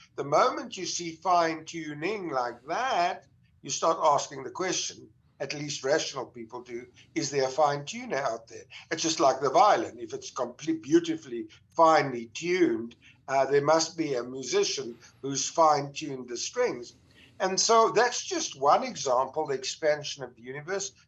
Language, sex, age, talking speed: English, male, 60-79, 155 wpm